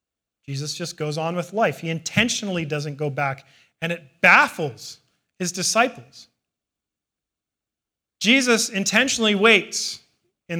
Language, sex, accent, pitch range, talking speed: English, male, American, 145-195 Hz, 115 wpm